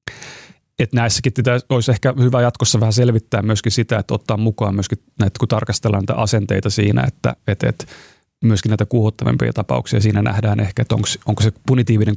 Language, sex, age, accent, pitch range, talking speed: English, male, 30-49, Finnish, 110-125 Hz, 175 wpm